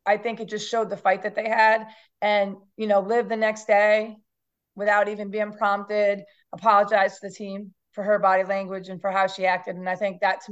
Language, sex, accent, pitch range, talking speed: English, female, American, 185-215 Hz, 220 wpm